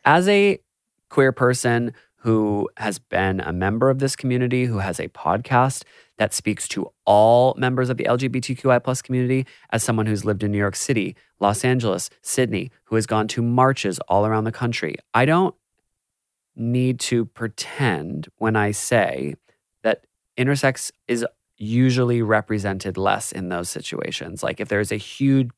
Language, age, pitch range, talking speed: English, 20-39, 105-125 Hz, 160 wpm